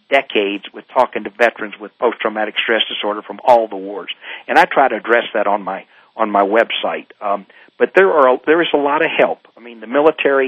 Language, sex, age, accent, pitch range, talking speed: English, male, 50-69, American, 110-155 Hz, 220 wpm